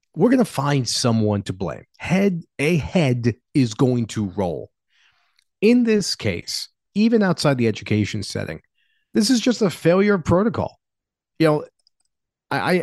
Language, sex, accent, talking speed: English, male, American, 145 wpm